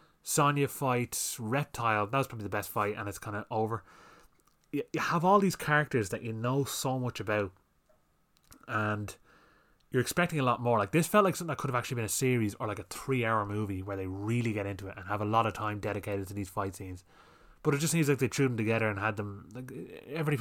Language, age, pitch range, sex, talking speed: English, 20-39, 105-135 Hz, male, 230 wpm